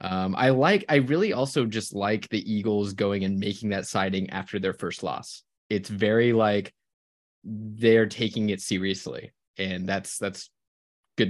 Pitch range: 100-120 Hz